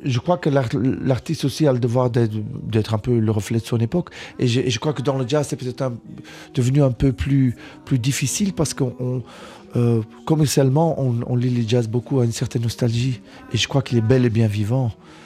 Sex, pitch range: male, 115-135 Hz